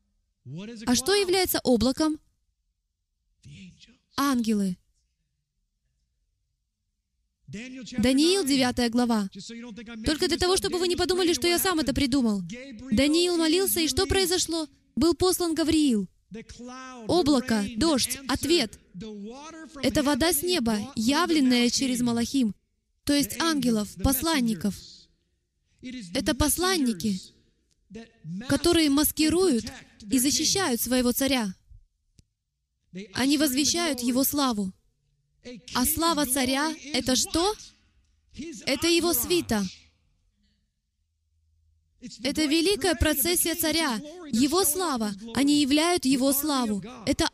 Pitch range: 210-315 Hz